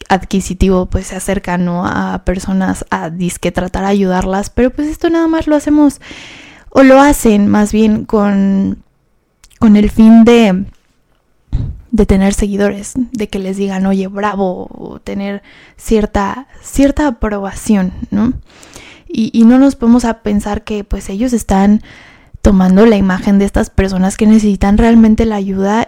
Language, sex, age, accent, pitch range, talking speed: Spanish, female, 10-29, Mexican, 195-235 Hz, 155 wpm